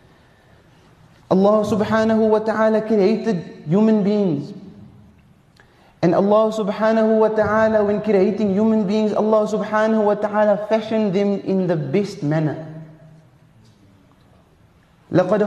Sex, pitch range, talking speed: male, 185-230 Hz, 105 wpm